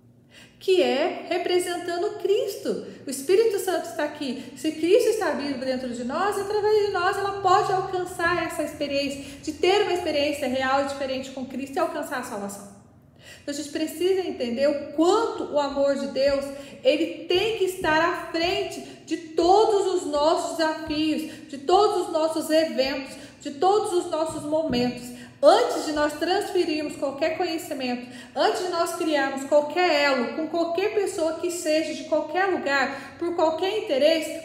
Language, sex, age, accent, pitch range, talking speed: Portuguese, female, 40-59, Brazilian, 285-365 Hz, 160 wpm